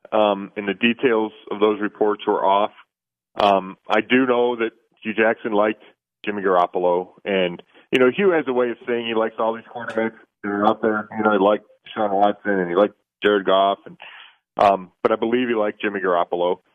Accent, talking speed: American, 205 wpm